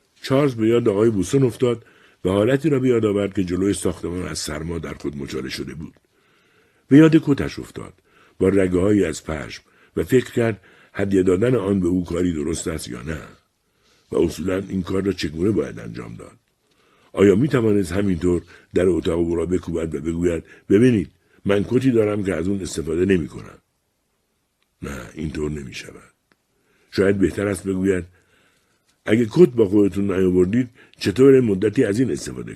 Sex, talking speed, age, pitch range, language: male, 165 wpm, 60-79, 90-115 Hz, Persian